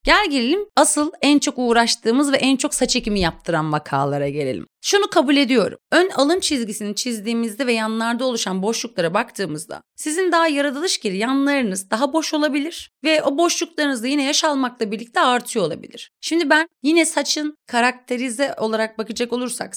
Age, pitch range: 30-49, 205-275 Hz